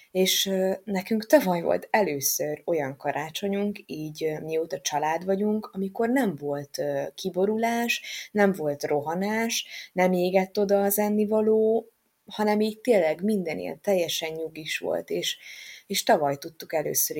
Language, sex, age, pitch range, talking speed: Hungarian, female, 20-39, 155-190 Hz, 130 wpm